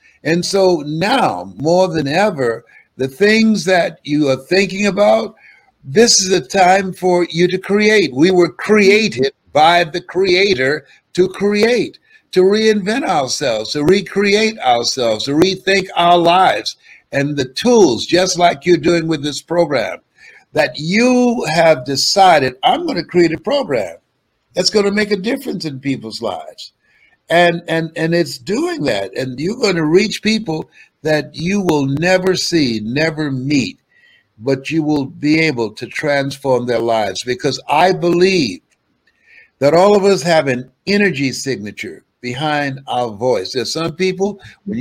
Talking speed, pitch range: 150 wpm, 145-200 Hz